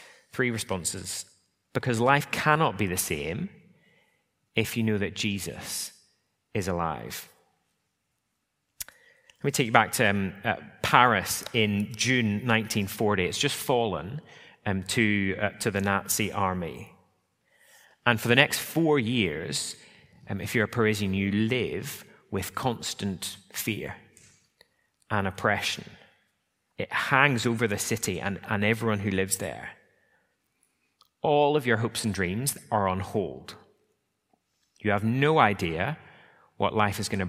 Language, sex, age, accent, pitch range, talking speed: English, male, 30-49, British, 95-120 Hz, 135 wpm